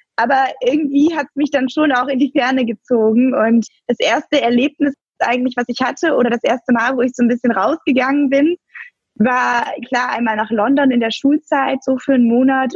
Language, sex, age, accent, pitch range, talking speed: German, female, 20-39, German, 230-270 Hz, 200 wpm